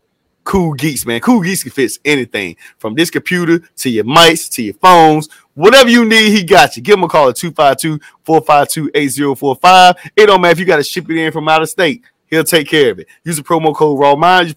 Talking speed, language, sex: 225 wpm, English, male